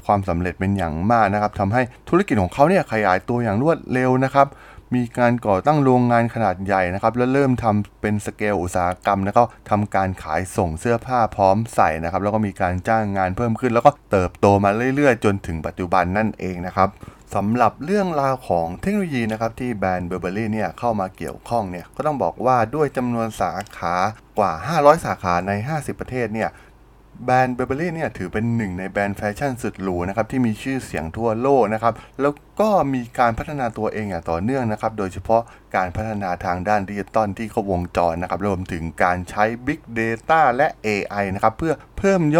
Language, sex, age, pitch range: Thai, male, 20-39, 95-125 Hz